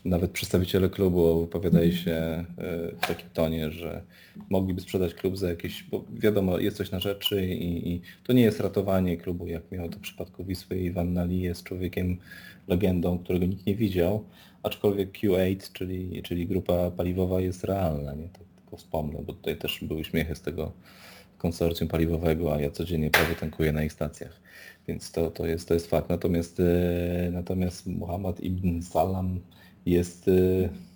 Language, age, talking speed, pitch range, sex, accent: Polish, 30-49, 165 wpm, 85-95 Hz, male, native